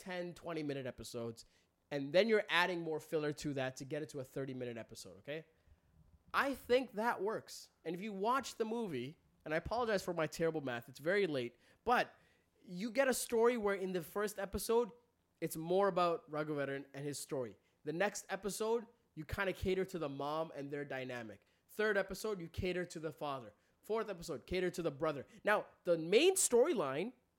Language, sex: English, male